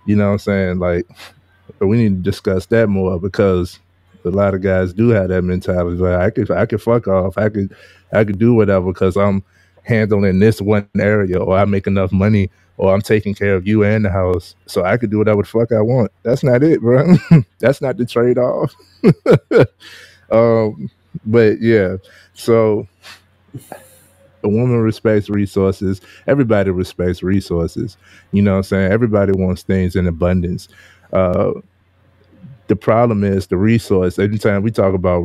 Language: English